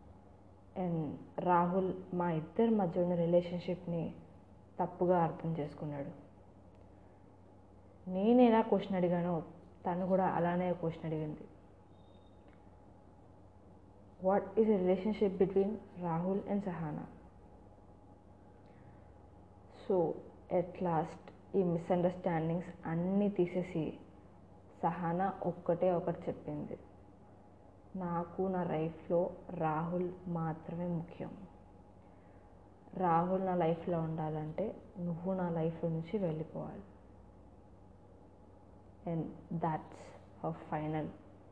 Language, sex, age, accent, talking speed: Telugu, female, 20-39, native, 80 wpm